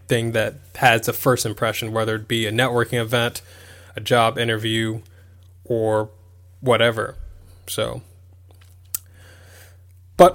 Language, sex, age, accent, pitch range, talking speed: English, male, 10-29, American, 90-125 Hz, 110 wpm